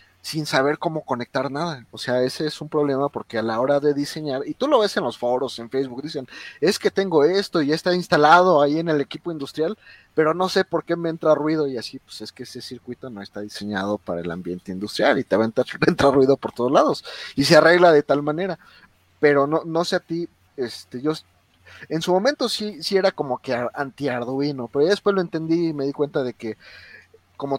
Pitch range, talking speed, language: 125-160 Hz, 230 wpm, Spanish